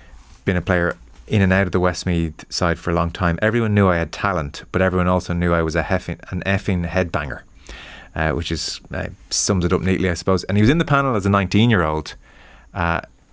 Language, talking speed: English, 235 wpm